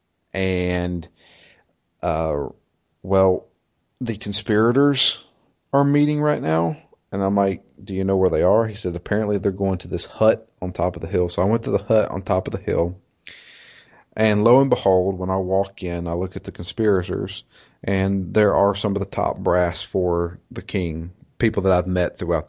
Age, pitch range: 40-59, 90-110 Hz